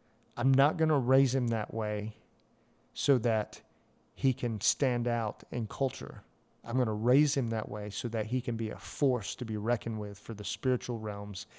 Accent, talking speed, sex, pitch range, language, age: American, 195 wpm, male, 110-135 Hz, English, 40-59